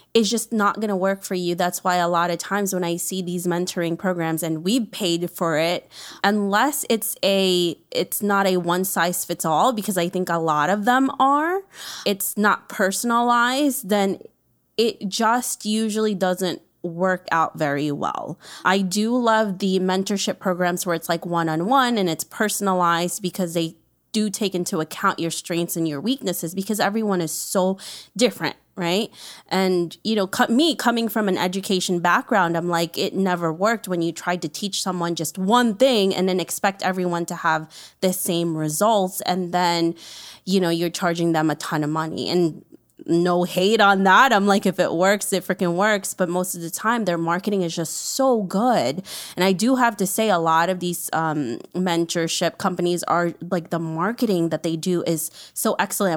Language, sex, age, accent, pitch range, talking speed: English, female, 20-39, American, 170-205 Hz, 190 wpm